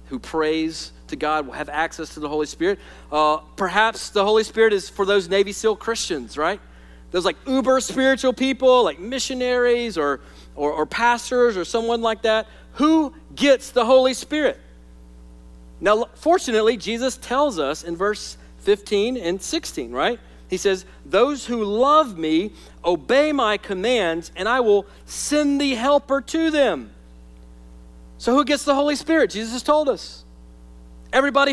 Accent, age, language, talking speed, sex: American, 40-59, English, 155 wpm, male